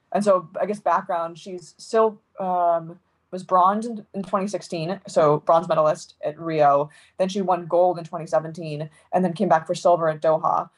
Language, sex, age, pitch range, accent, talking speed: English, female, 20-39, 160-195 Hz, American, 180 wpm